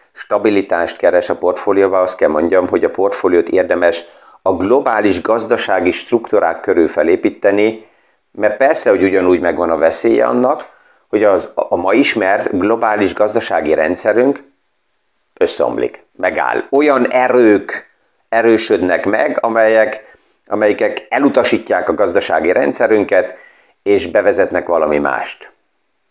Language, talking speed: Hungarian, 110 wpm